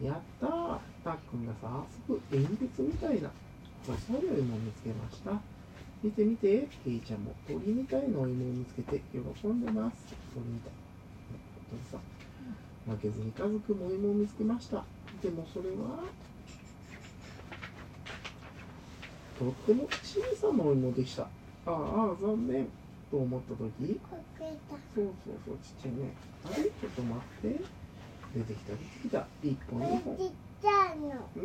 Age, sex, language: 40-59, male, Japanese